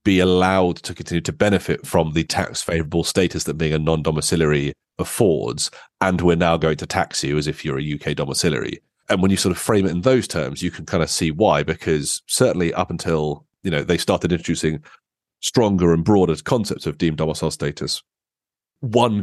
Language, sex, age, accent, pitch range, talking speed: English, male, 30-49, British, 80-95 Hz, 195 wpm